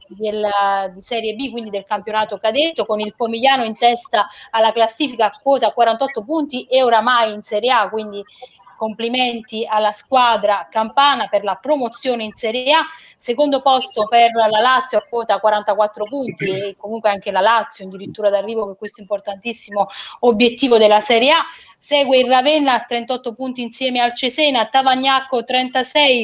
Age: 20-39